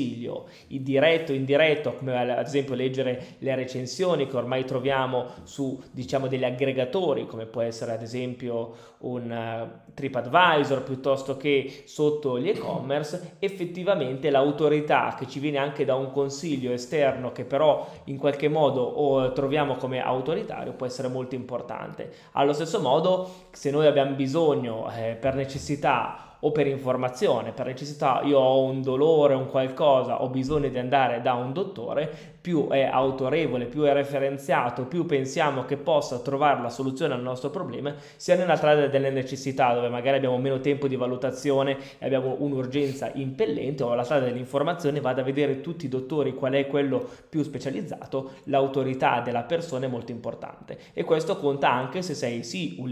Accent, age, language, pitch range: native, 20-39, Italian, 125-145 Hz